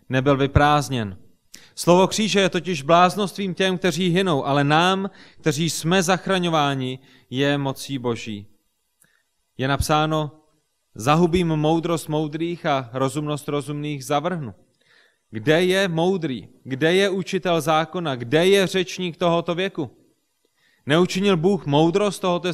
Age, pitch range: 30-49, 130-175 Hz